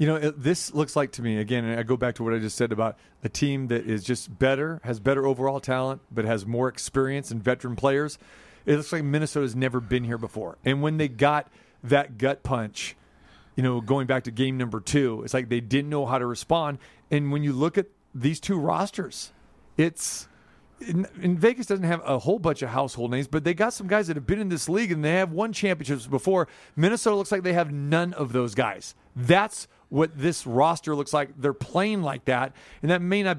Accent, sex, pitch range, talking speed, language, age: American, male, 130-170 Hz, 230 wpm, English, 40-59